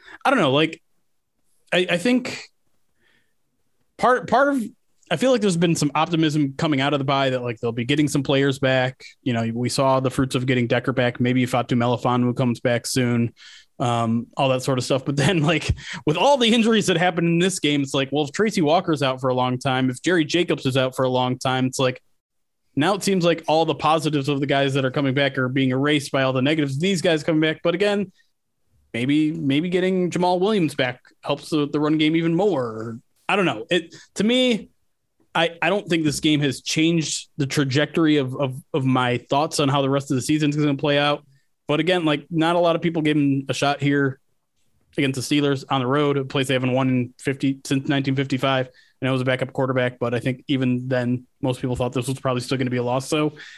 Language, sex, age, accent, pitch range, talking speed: English, male, 20-39, American, 130-165 Hz, 240 wpm